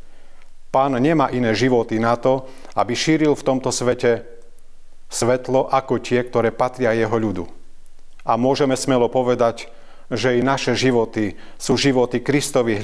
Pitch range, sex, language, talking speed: 110-135 Hz, male, Slovak, 135 wpm